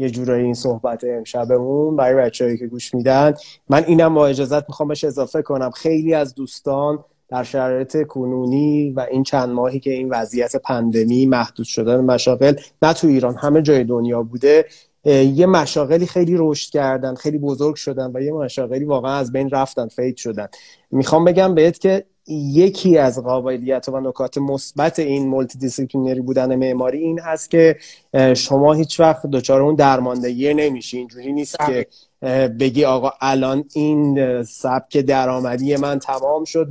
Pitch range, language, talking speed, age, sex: 130-150 Hz, Persian, 155 wpm, 30-49, male